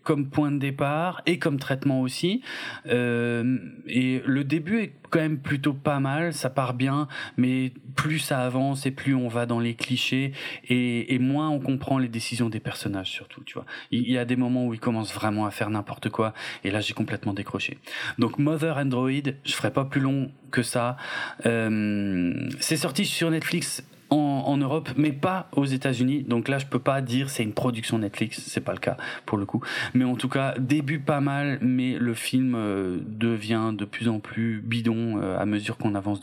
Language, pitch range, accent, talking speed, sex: French, 110-140 Hz, French, 205 wpm, male